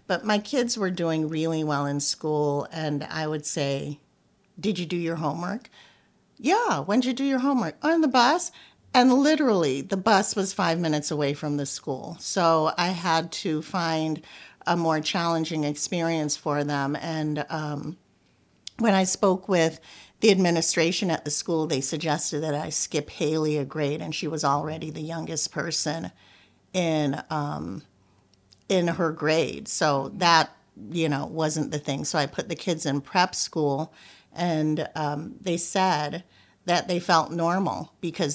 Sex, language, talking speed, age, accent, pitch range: female, English, 165 wpm, 50-69, American, 150-175 Hz